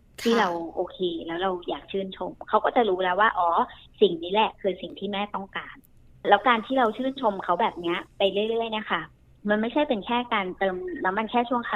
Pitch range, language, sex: 185-240 Hz, Thai, male